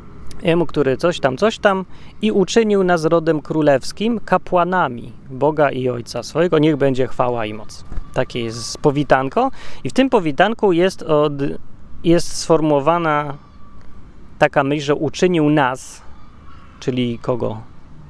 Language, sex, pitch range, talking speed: Polish, male, 120-165 Hz, 130 wpm